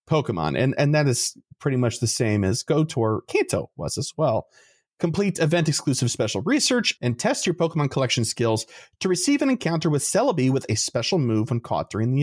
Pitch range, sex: 115-165 Hz, male